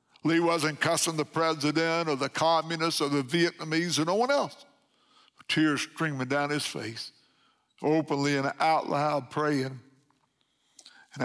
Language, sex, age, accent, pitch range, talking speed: English, male, 60-79, American, 140-165 Hz, 140 wpm